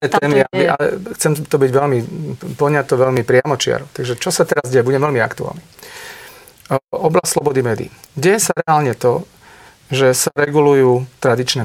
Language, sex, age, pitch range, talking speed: Slovak, male, 40-59, 125-160 Hz, 150 wpm